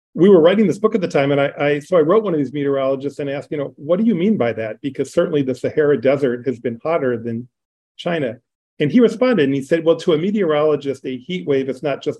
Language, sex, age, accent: English, male, 40-59, American